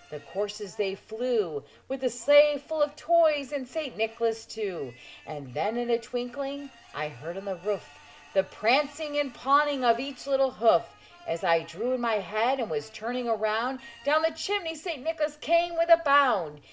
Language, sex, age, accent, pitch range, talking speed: English, female, 40-59, American, 210-280 Hz, 185 wpm